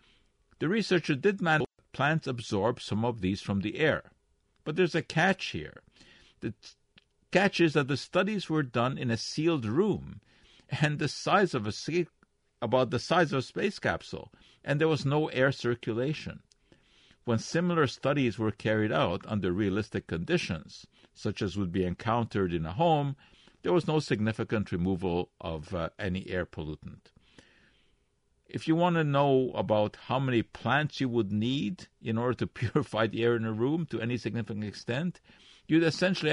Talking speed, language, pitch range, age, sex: 165 wpm, English, 110-155 Hz, 50-69, male